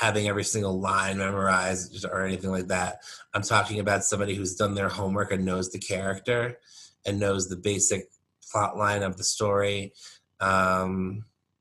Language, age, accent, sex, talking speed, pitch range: English, 20-39, American, male, 160 wpm, 95-110 Hz